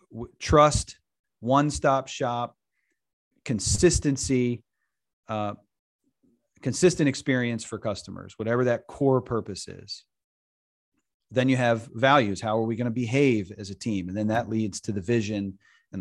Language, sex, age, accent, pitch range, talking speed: English, male, 30-49, American, 105-130 Hz, 130 wpm